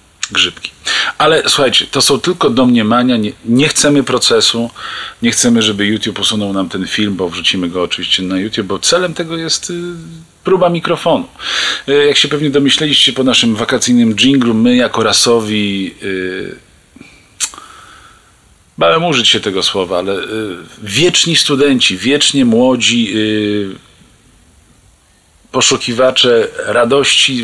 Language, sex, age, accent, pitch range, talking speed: Polish, male, 40-59, native, 105-135 Hz, 120 wpm